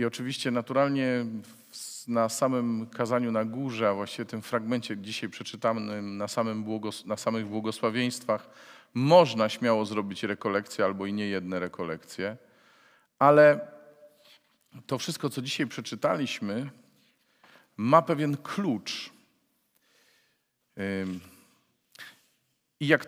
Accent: native